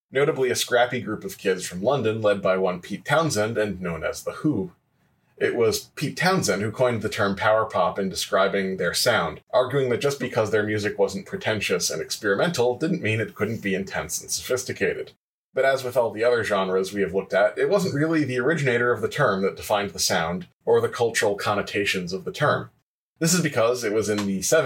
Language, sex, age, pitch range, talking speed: English, male, 30-49, 100-160 Hz, 210 wpm